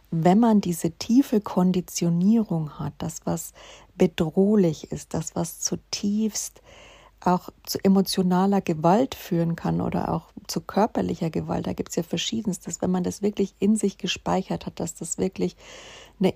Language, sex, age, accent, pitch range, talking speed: German, female, 50-69, German, 170-200 Hz, 150 wpm